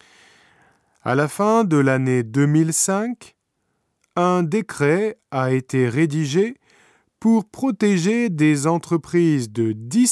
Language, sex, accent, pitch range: Japanese, male, French, 125-185 Hz